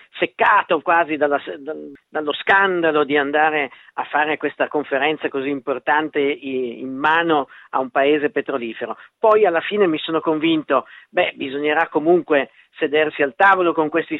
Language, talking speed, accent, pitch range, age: Italian, 140 wpm, native, 145-175 Hz, 50-69